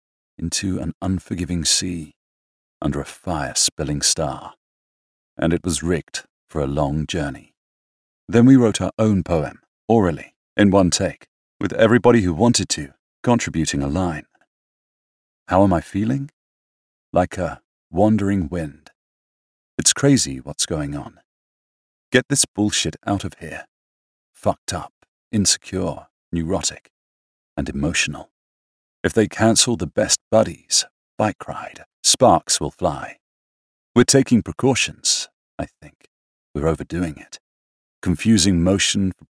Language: English